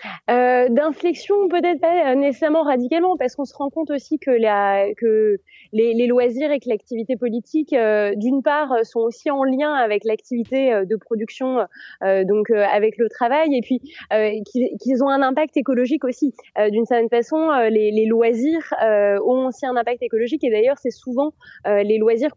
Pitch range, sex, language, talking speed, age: 225-285 Hz, female, French, 185 wpm, 20-39